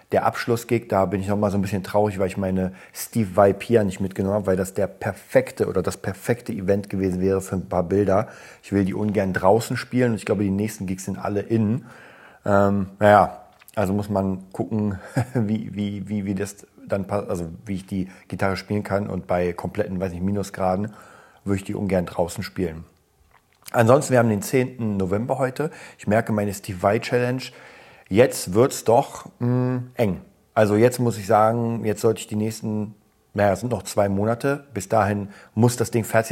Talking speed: 200 wpm